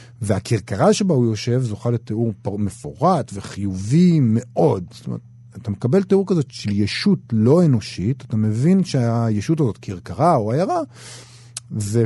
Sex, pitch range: male, 110-130 Hz